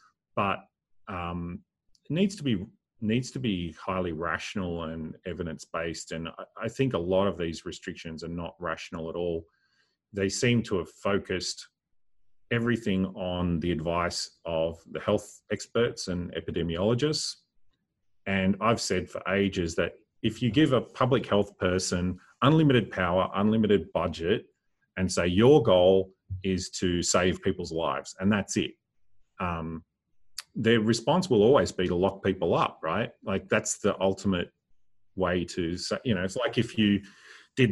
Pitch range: 90-110 Hz